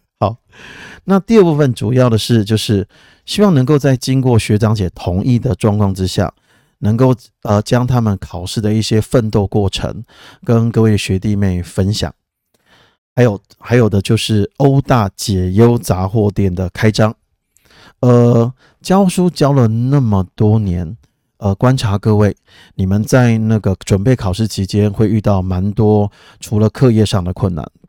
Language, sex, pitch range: Chinese, male, 100-125 Hz